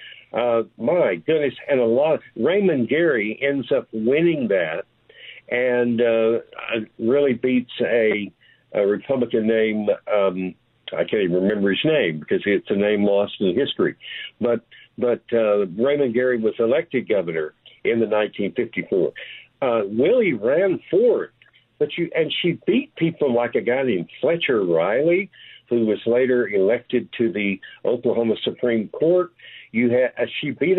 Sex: male